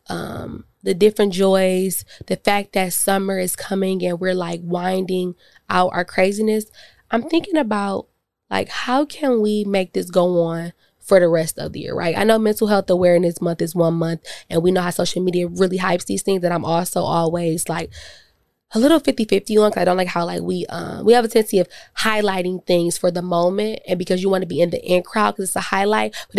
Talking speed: 215 wpm